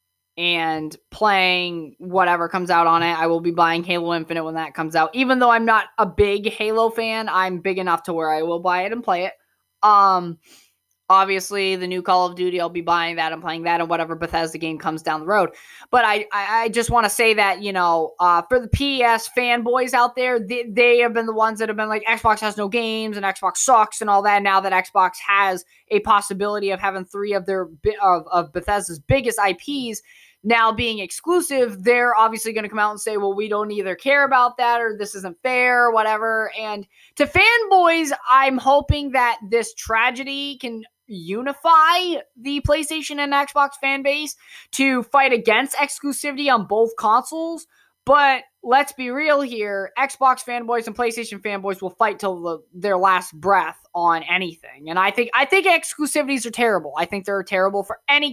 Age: 20-39